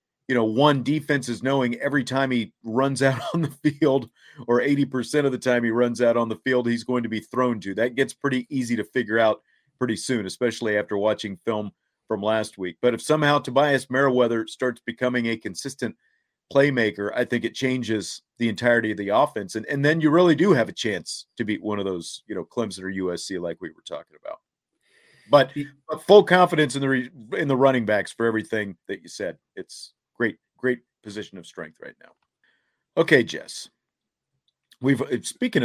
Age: 40-59